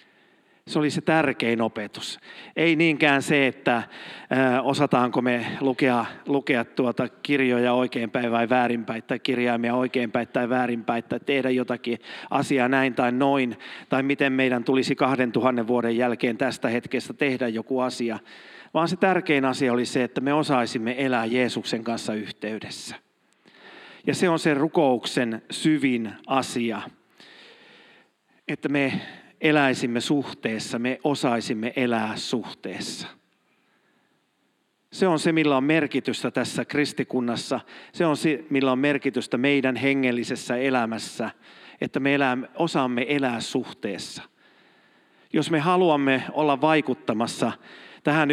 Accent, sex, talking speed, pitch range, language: native, male, 125 wpm, 120-145 Hz, Finnish